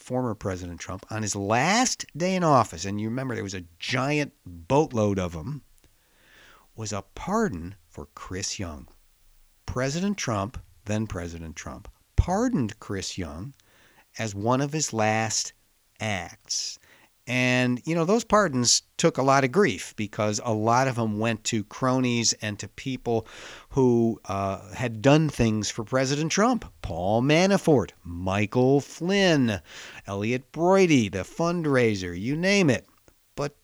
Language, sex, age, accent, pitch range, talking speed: English, male, 50-69, American, 100-130 Hz, 145 wpm